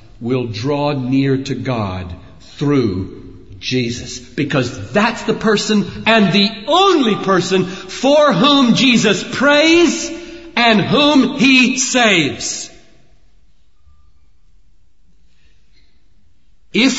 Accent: American